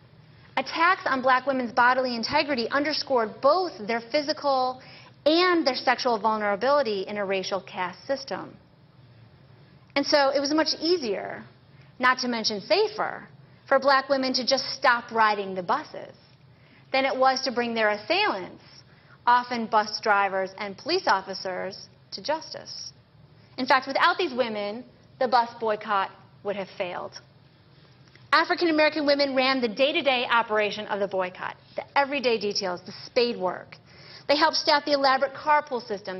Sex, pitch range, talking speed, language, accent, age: female, 205-285 Hz, 145 wpm, English, American, 30-49